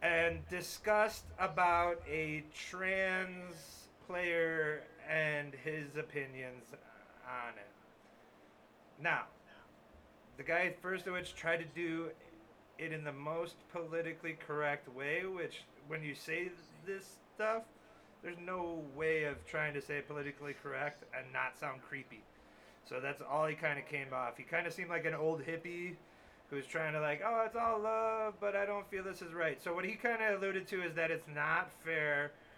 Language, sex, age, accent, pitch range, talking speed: English, male, 30-49, American, 145-175 Hz, 165 wpm